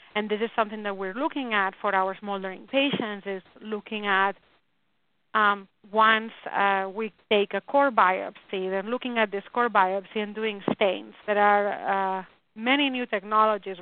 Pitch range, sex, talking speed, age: 195-220 Hz, female, 165 wpm, 30-49